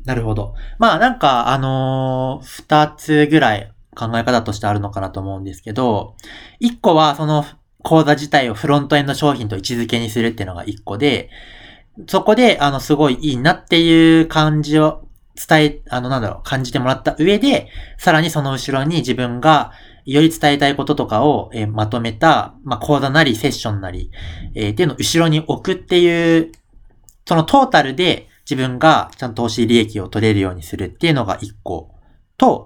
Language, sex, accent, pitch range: Japanese, male, native, 110-155 Hz